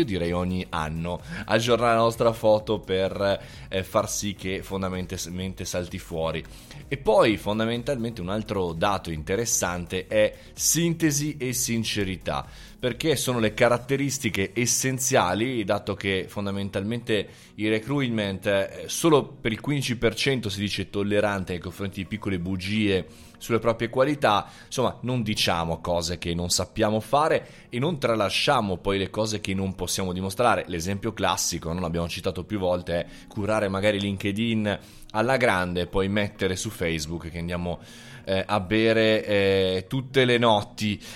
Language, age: Italian, 20-39